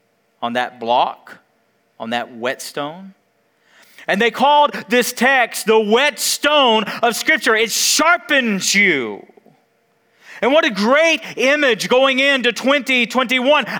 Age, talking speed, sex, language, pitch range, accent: 40-59, 115 wpm, male, English, 200-260 Hz, American